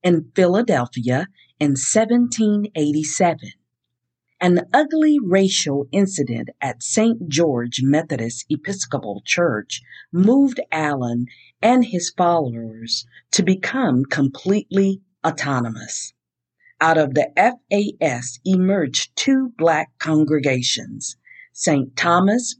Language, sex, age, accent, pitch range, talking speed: English, female, 50-69, American, 130-195 Hz, 90 wpm